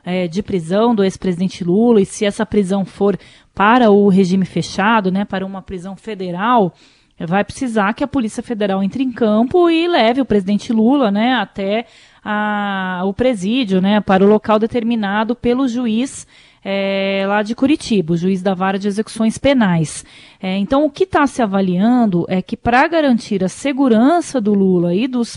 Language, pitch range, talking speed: Portuguese, 185-225 Hz, 170 wpm